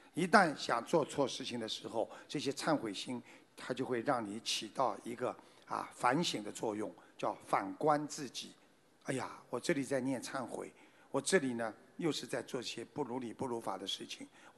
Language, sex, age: Chinese, male, 50-69